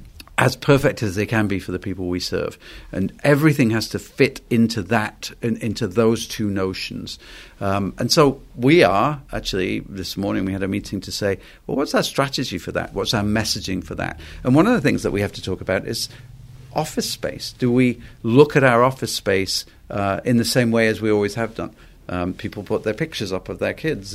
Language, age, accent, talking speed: English, 50-69, British, 215 wpm